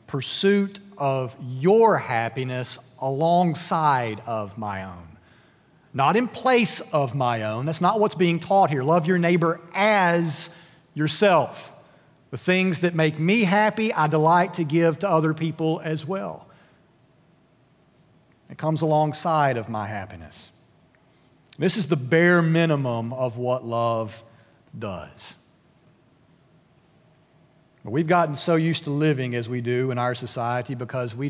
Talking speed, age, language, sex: 135 wpm, 40-59, English, male